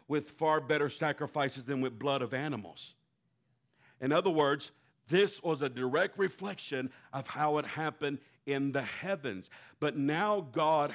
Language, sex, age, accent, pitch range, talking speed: English, male, 50-69, American, 120-160 Hz, 150 wpm